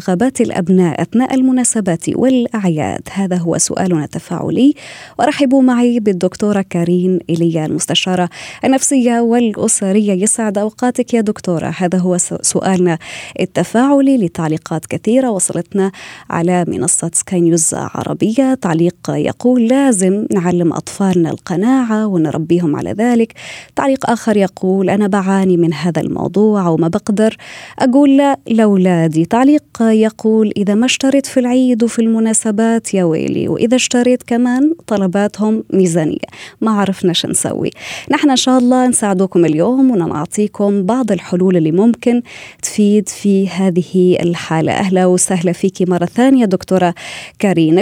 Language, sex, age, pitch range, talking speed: Arabic, female, 20-39, 180-245 Hz, 120 wpm